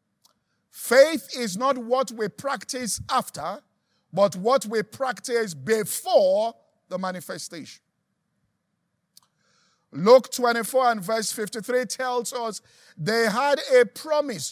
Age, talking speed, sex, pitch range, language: 50-69, 105 wpm, male, 205-265 Hz, English